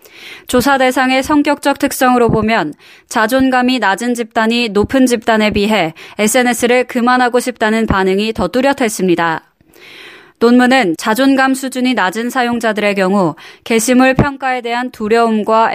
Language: Korean